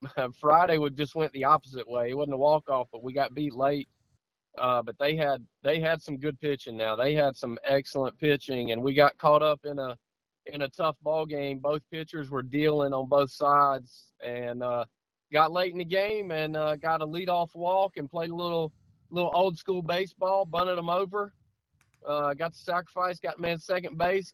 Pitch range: 140-170 Hz